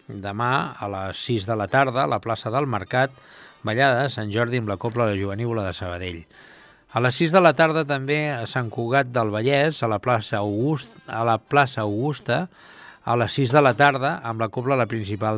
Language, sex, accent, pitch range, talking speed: English, male, Spanish, 105-135 Hz, 210 wpm